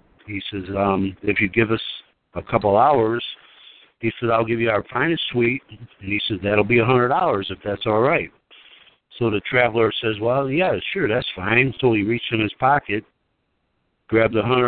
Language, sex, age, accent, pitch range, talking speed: English, male, 60-79, American, 110-135 Hz, 180 wpm